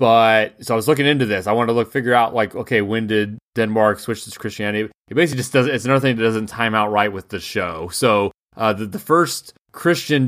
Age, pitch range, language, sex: 20-39, 105-125 Hz, English, male